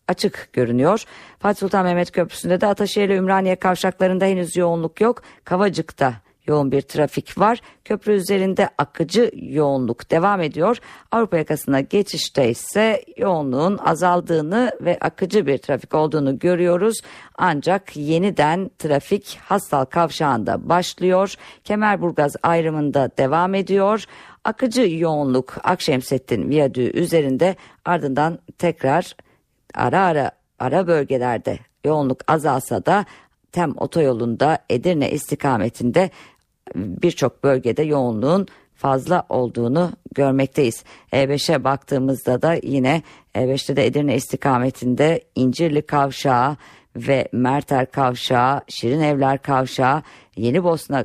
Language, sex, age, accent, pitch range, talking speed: Turkish, female, 50-69, native, 135-175 Hz, 105 wpm